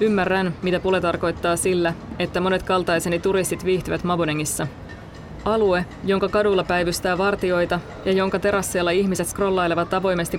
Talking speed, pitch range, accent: 125 wpm, 165-190 Hz, native